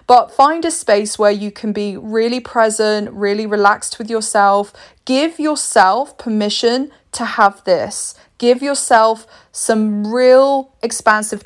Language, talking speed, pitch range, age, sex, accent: English, 130 wpm, 205-235 Hz, 20-39, female, British